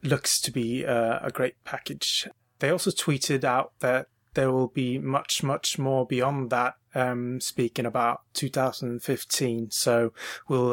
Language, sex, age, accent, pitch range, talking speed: English, male, 30-49, British, 120-135 Hz, 140 wpm